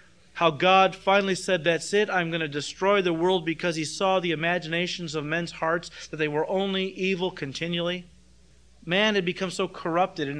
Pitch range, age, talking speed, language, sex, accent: 165-255 Hz, 40-59, 185 wpm, English, male, American